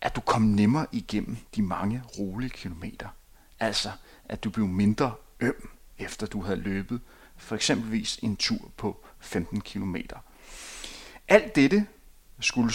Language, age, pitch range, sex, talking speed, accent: Danish, 30-49, 110-150 Hz, male, 130 wpm, native